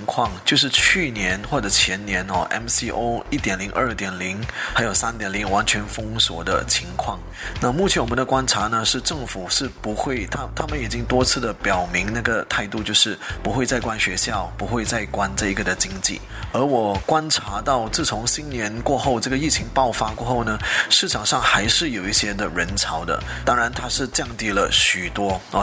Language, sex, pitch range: Chinese, male, 100-125 Hz